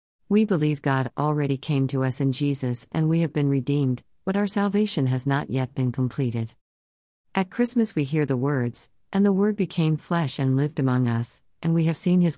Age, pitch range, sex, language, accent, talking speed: 50-69, 125-160 Hz, female, English, American, 205 wpm